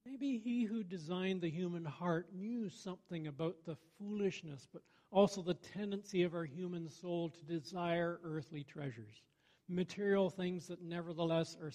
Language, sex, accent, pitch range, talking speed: English, male, American, 140-180 Hz, 150 wpm